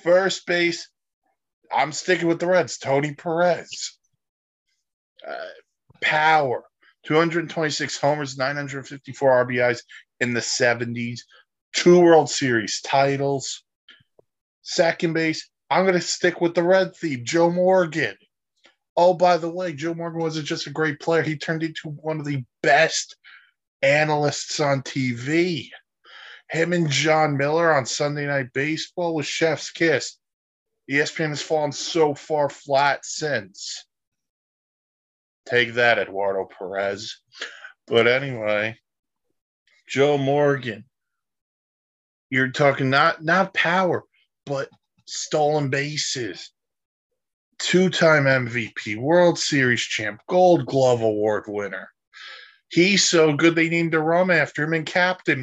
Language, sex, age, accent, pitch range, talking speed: English, male, 20-39, American, 135-170 Hz, 120 wpm